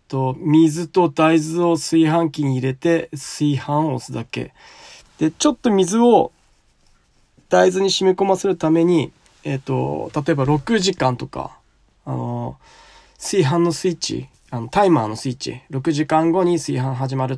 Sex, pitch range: male, 140-185 Hz